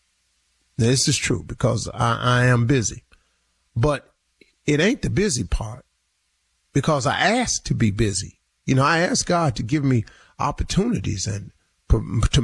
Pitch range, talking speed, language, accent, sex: 120-180 Hz, 150 wpm, English, American, male